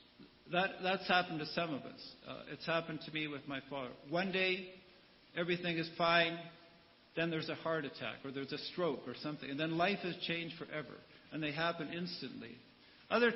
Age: 50-69